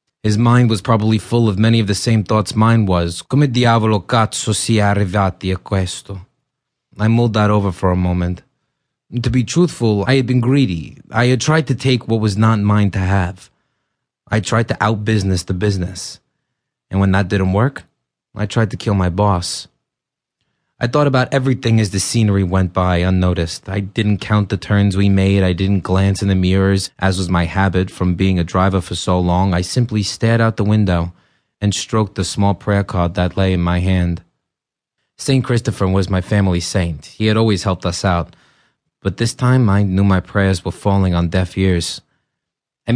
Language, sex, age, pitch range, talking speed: English, male, 30-49, 95-115 Hz, 195 wpm